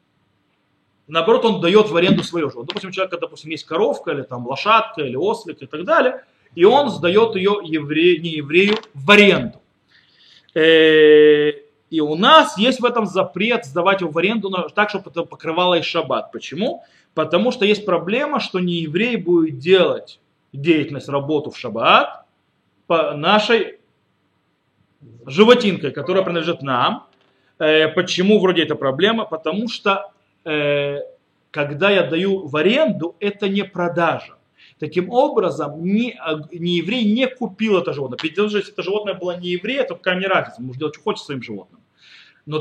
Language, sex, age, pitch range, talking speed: Russian, male, 30-49, 155-215 Hz, 150 wpm